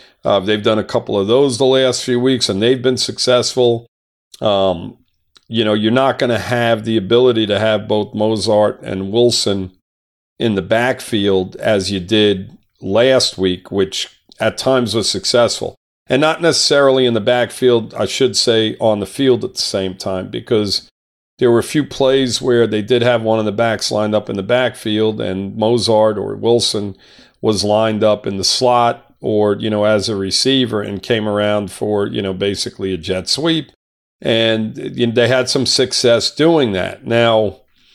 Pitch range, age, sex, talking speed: 100-120 Hz, 50-69, male, 180 wpm